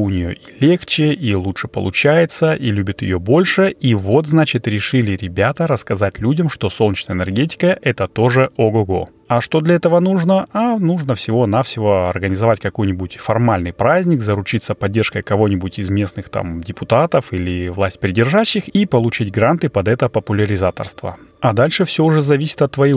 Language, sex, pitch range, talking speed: Russian, male, 105-145 Hz, 155 wpm